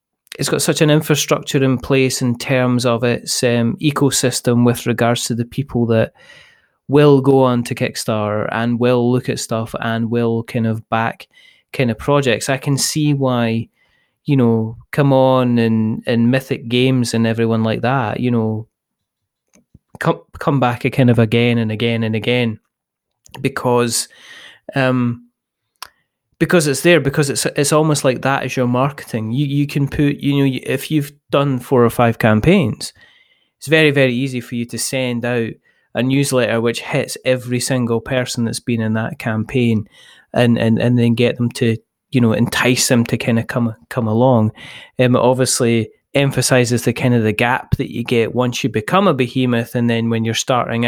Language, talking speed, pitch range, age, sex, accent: English, 180 wpm, 115-135 Hz, 20-39, male, British